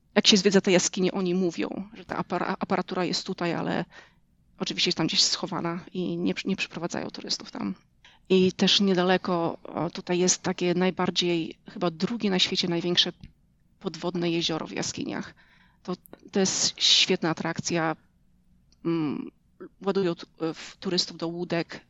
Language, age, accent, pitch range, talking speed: Polish, 30-49, native, 175-195 Hz, 135 wpm